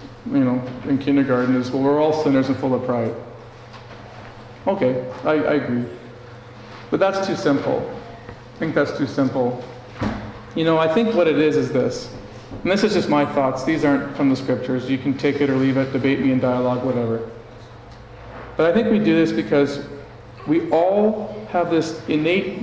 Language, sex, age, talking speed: English, male, 40-59, 185 wpm